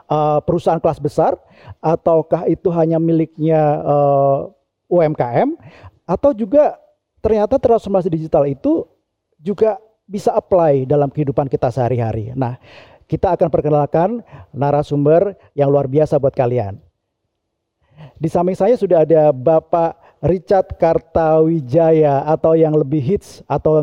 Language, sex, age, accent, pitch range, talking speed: Indonesian, male, 40-59, native, 140-165 Hz, 120 wpm